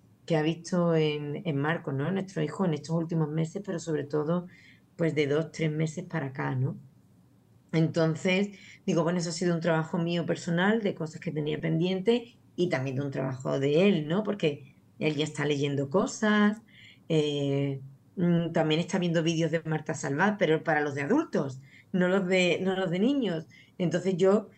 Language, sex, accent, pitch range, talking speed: Spanish, female, Spanish, 155-185 Hz, 185 wpm